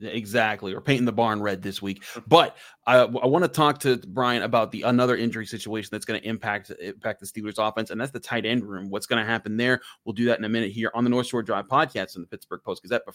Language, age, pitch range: English, 30-49, 110-130 Hz